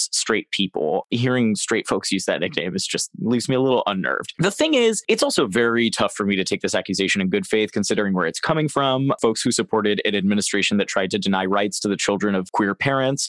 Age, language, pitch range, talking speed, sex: 20-39, English, 100-140 Hz, 235 wpm, male